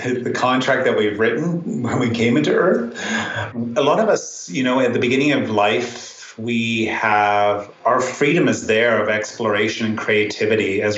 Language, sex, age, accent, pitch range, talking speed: English, male, 30-49, American, 105-120 Hz, 175 wpm